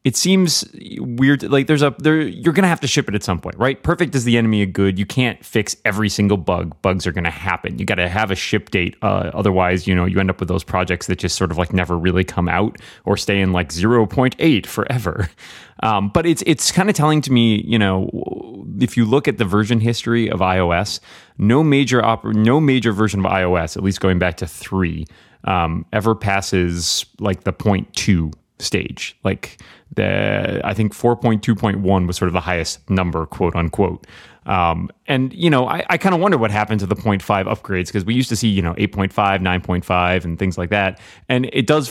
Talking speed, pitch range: 215 wpm, 90-115 Hz